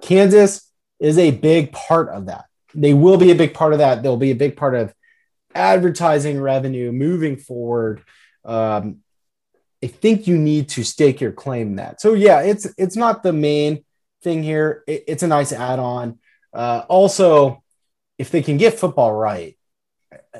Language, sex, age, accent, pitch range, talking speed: English, male, 30-49, American, 120-160 Hz, 170 wpm